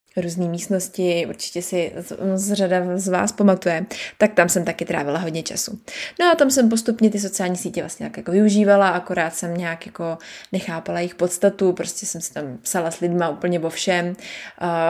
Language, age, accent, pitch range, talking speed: Czech, 20-39, native, 175-215 Hz, 190 wpm